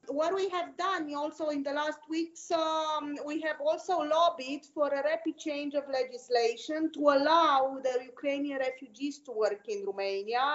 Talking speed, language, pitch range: 165 wpm, Romanian, 255-310 Hz